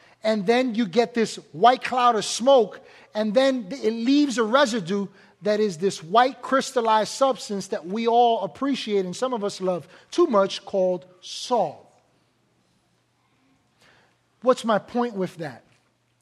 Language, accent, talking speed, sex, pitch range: English, American, 145 wpm, male, 165-215 Hz